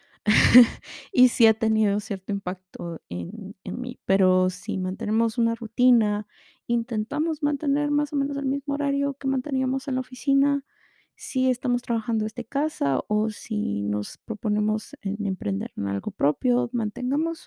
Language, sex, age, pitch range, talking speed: Spanish, female, 30-49, 205-255 Hz, 145 wpm